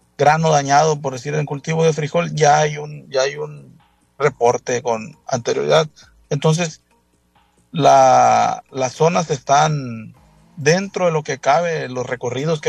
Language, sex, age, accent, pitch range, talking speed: Spanish, male, 40-59, Venezuelan, 130-155 Hz, 140 wpm